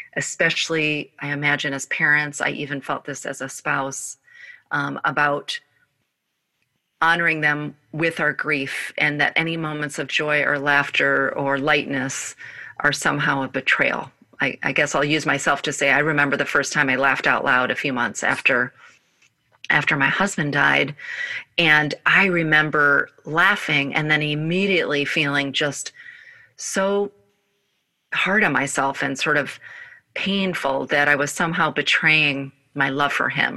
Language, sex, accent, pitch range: English, female, American, 140-165 Hz